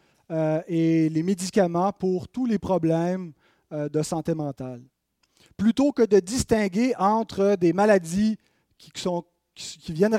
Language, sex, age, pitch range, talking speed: French, male, 30-49, 165-215 Hz, 135 wpm